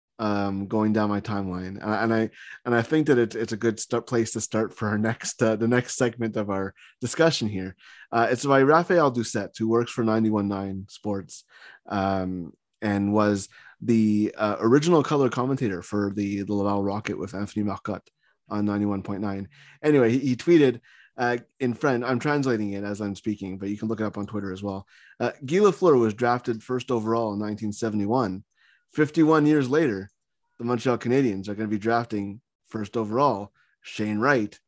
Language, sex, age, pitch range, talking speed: English, male, 20-39, 100-125 Hz, 185 wpm